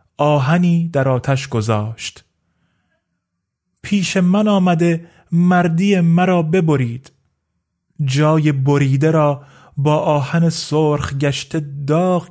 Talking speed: 90 wpm